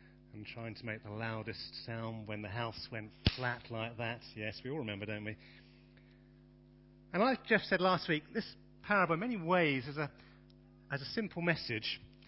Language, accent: English, British